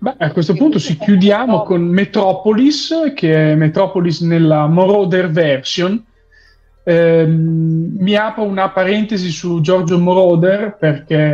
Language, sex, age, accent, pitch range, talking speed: Italian, male, 30-49, native, 155-195 Hz, 120 wpm